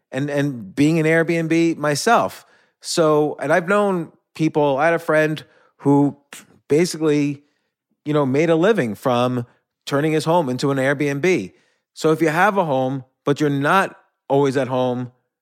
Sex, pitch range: male, 130-170 Hz